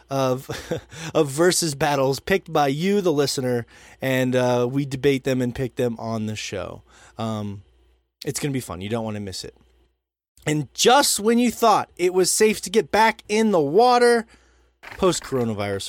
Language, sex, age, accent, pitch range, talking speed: English, male, 20-39, American, 135-220 Hz, 175 wpm